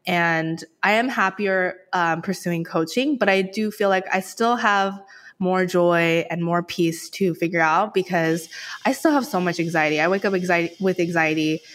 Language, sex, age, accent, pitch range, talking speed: English, female, 20-39, American, 165-195 Hz, 185 wpm